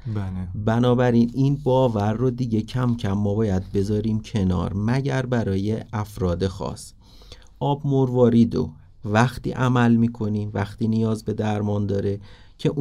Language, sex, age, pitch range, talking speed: Persian, male, 30-49, 100-125 Hz, 125 wpm